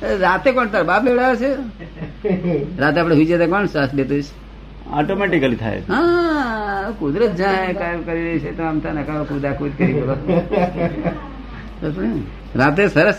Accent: native